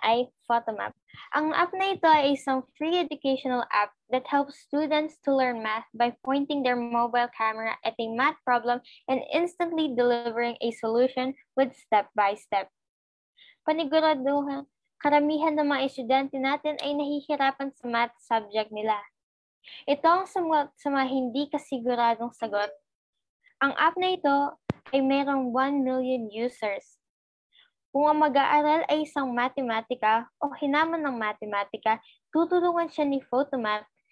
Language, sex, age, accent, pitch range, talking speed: Filipino, female, 20-39, native, 230-290 Hz, 130 wpm